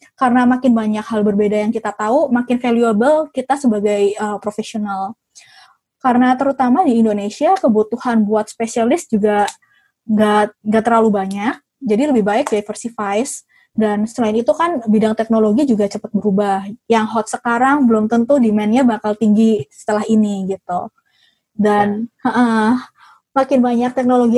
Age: 20-39